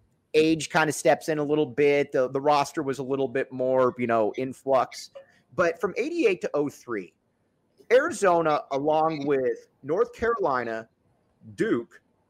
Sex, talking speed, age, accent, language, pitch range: male, 150 wpm, 30-49, American, English, 125-180 Hz